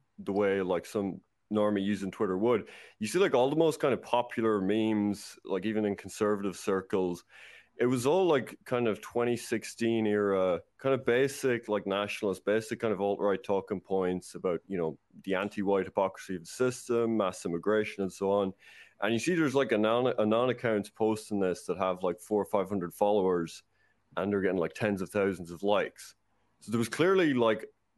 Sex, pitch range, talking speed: male, 95-115 Hz, 190 wpm